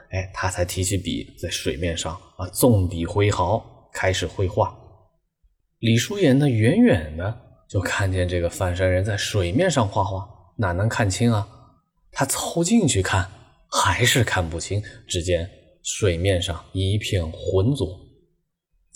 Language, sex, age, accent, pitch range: Chinese, male, 20-39, native, 95-125 Hz